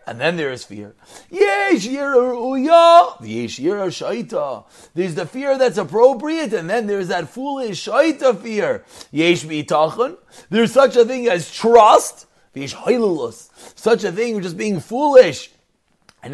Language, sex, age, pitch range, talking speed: English, male, 30-49, 220-260 Hz, 110 wpm